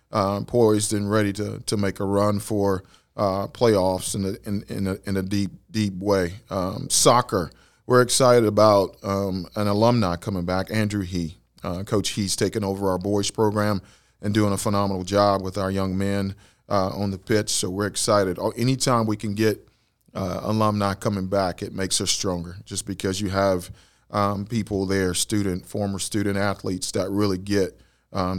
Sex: male